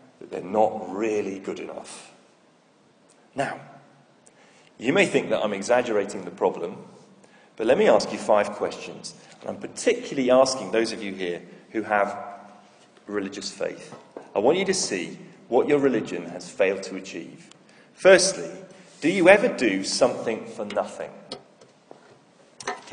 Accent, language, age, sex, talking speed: British, English, 40-59, male, 145 wpm